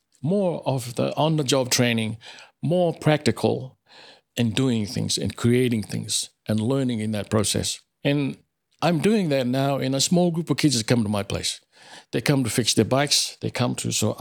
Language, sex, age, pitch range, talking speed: English, male, 60-79, 110-145 Hz, 185 wpm